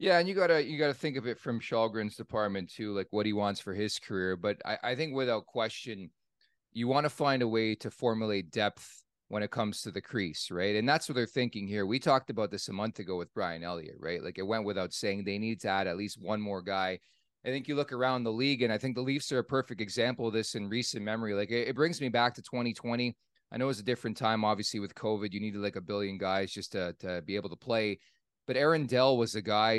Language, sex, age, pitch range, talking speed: English, male, 30-49, 105-130 Hz, 265 wpm